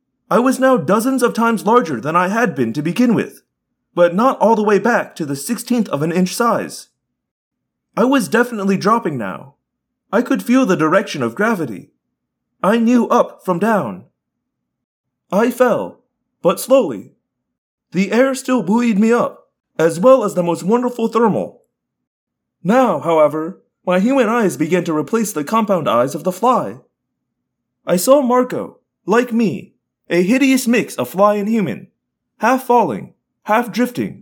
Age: 30-49